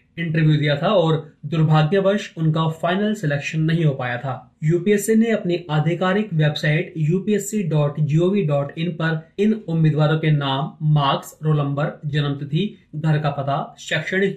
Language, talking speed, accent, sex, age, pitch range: Hindi, 130 wpm, native, male, 30-49, 150-180 Hz